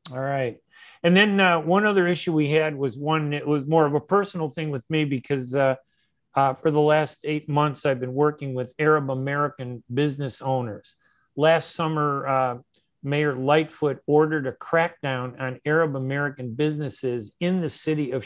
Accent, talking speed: American, 175 wpm